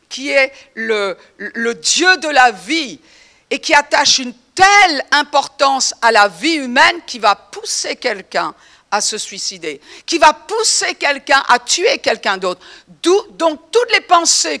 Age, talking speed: 50-69, 155 wpm